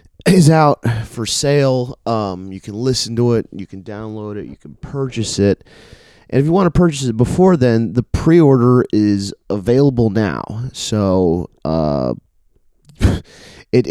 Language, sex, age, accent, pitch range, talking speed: English, male, 30-49, American, 90-120 Hz, 150 wpm